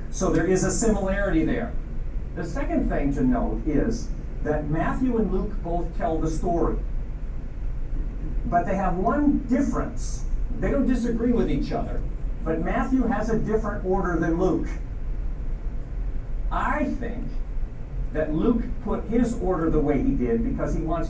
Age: 50-69